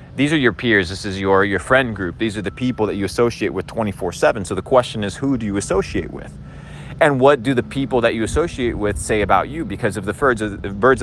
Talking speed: 240 wpm